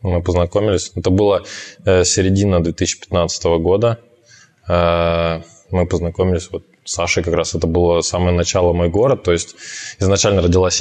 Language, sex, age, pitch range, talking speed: Russian, male, 20-39, 85-100 Hz, 135 wpm